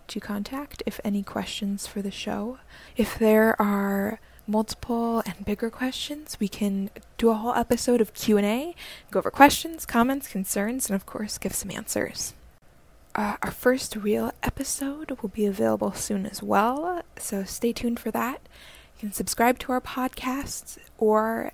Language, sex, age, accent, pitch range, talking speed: English, female, 20-39, American, 210-250 Hz, 160 wpm